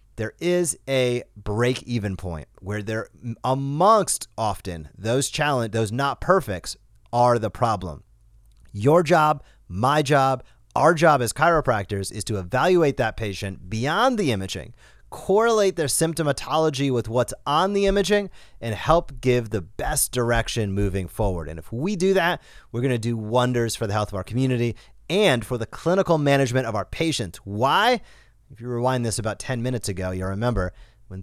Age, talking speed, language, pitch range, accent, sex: 30-49, 165 wpm, English, 105-135 Hz, American, male